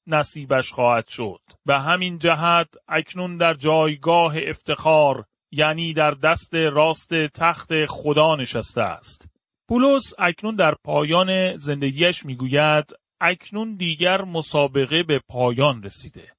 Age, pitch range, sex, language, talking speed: 40-59, 135-170 Hz, male, Persian, 115 wpm